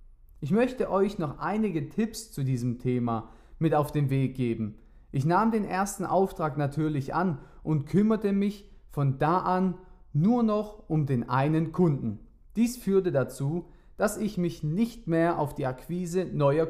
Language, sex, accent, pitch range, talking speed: German, male, German, 135-195 Hz, 160 wpm